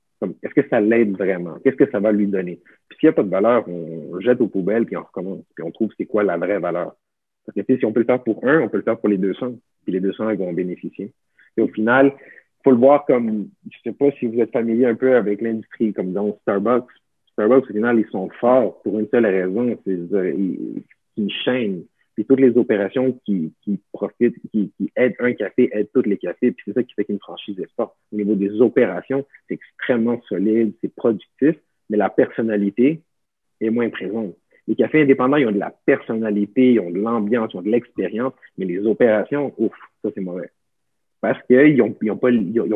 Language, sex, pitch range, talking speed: French, male, 105-125 Hz, 225 wpm